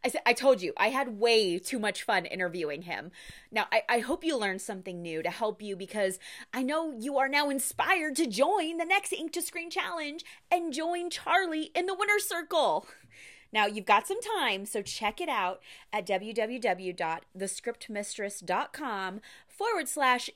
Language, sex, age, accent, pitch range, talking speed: English, female, 30-49, American, 210-310 Hz, 175 wpm